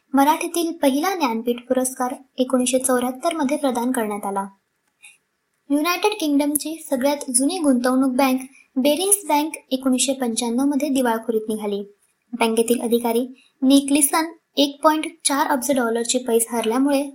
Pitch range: 250-295 Hz